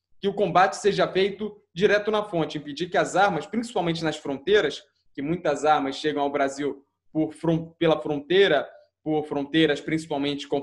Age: 20-39